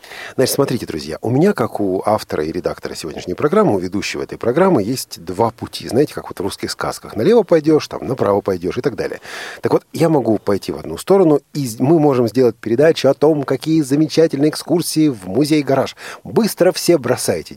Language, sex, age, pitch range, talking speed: Russian, male, 40-59, 110-155 Hz, 190 wpm